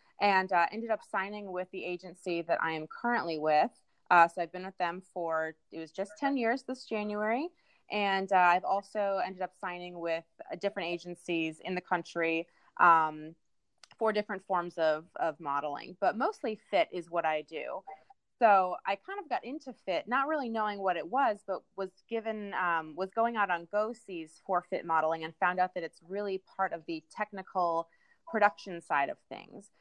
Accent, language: American, English